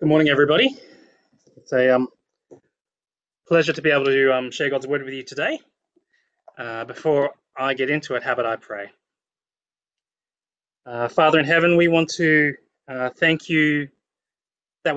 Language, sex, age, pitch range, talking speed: English, male, 20-39, 125-160 Hz, 155 wpm